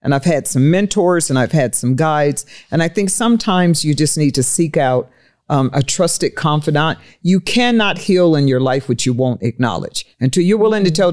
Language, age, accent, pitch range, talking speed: English, 50-69, American, 150-210 Hz, 210 wpm